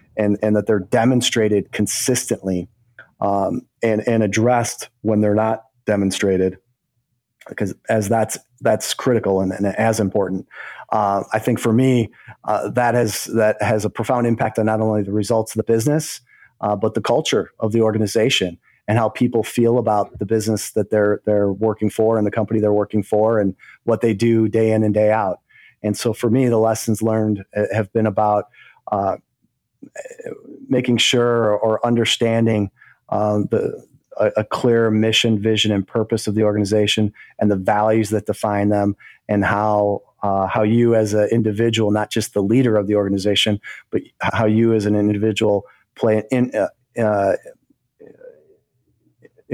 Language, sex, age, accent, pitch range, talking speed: English, male, 30-49, American, 105-115 Hz, 165 wpm